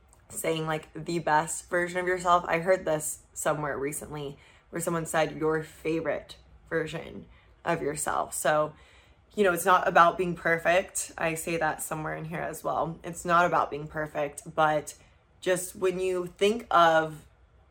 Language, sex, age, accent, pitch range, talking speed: English, female, 20-39, American, 150-175 Hz, 160 wpm